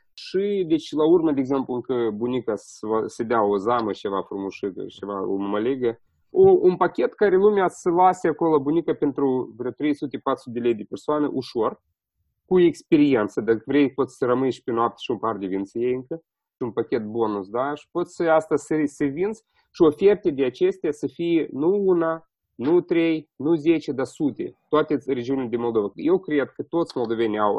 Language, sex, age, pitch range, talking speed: Romanian, male, 30-49, 125-185 Hz, 180 wpm